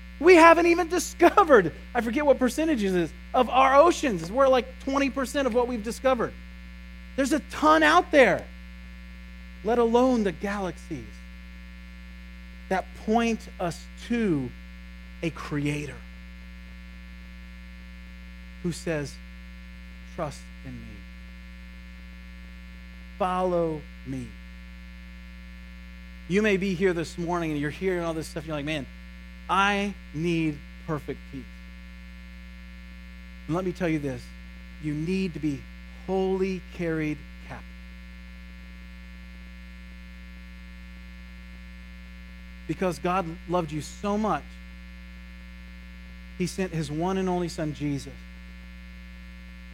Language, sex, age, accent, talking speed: English, male, 30-49, American, 105 wpm